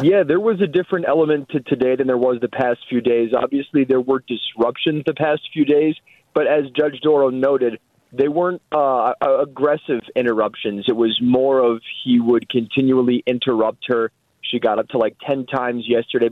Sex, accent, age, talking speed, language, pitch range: male, American, 20-39, 185 wpm, English, 115-135 Hz